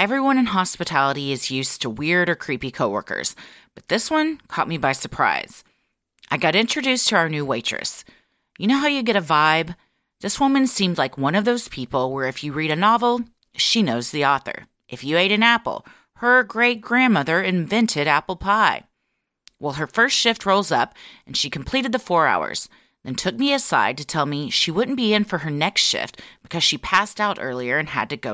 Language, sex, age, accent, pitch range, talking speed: English, female, 30-49, American, 145-225 Hz, 200 wpm